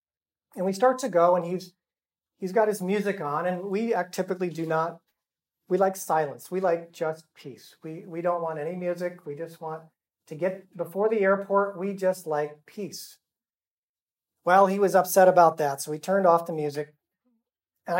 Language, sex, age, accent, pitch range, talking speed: English, male, 40-59, American, 165-195 Hz, 185 wpm